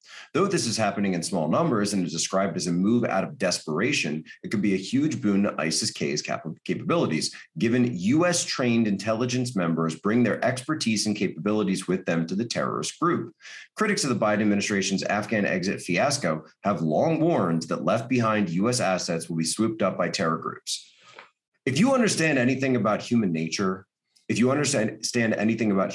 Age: 30-49